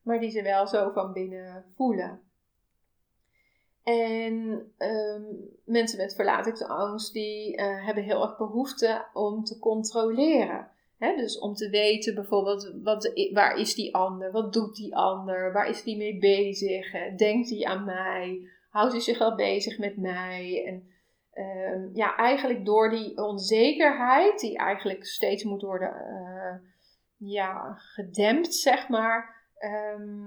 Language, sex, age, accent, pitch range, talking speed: Dutch, female, 30-49, Dutch, 195-225 Hz, 145 wpm